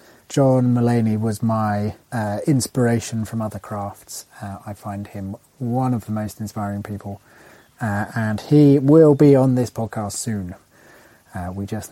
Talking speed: 155 wpm